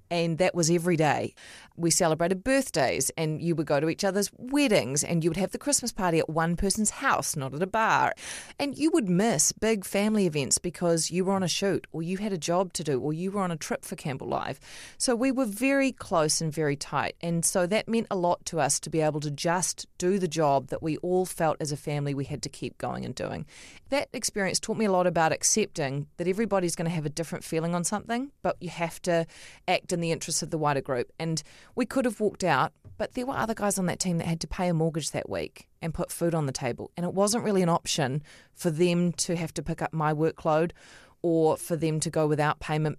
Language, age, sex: English, 30-49, female